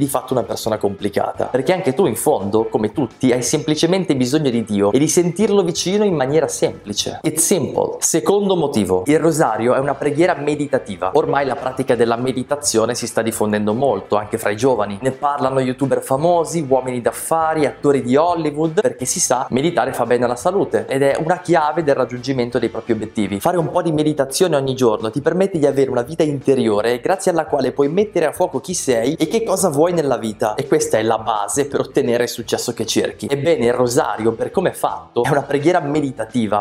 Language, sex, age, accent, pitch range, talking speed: Italian, male, 20-39, native, 120-165 Hz, 200 wpm